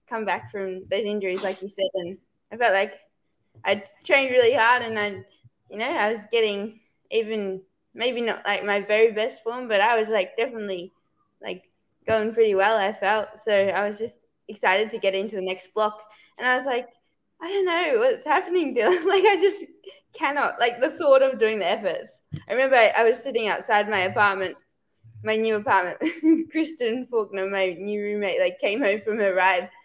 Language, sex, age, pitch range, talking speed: English, female, 20-39, 190-250 Hz, 195 wpm